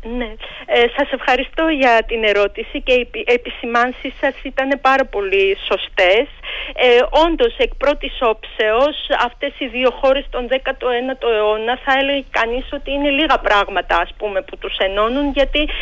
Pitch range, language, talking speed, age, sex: 220-300 Hz, Greek, 150 wpm, 40-59, female